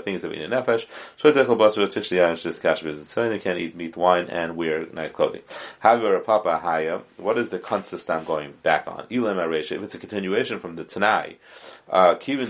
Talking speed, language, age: 195 wpm, English, 30-49